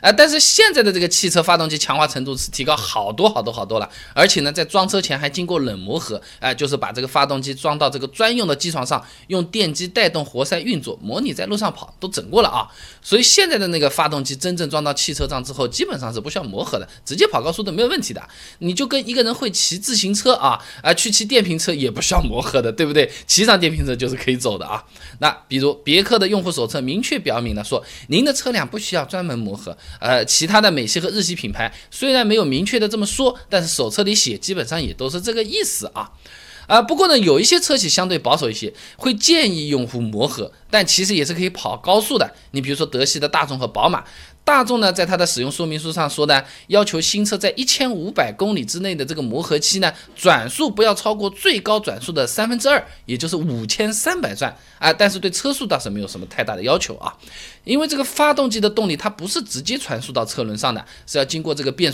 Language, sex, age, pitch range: Chinese, male, 20-39, 145-215 Hz